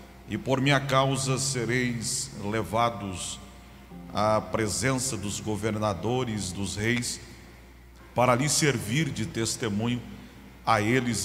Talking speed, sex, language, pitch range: 100 wpm, male, Portuguese, 100-135 Hz